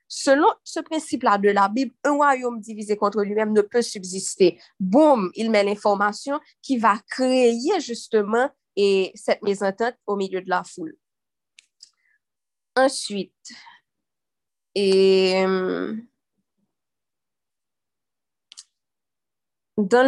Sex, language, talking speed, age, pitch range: female, French, 105 wpm, 20-39, 205-285 Hz